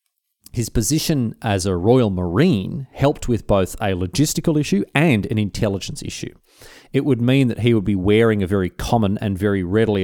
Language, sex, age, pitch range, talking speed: English, male, 30-49, 95-130 Hz, 180 wpm